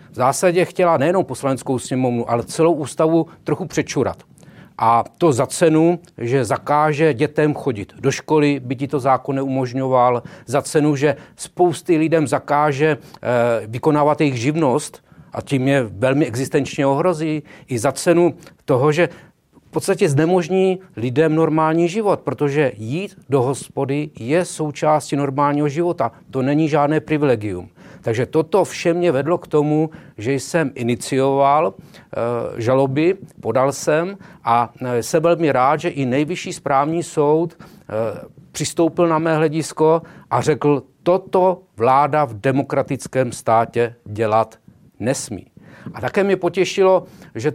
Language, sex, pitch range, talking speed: Czech, male, 135-170 Hz, 135 wpm